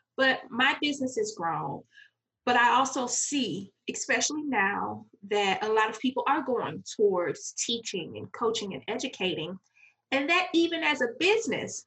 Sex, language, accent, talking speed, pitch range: female, English, American, 150 wpm, 195-255 Hz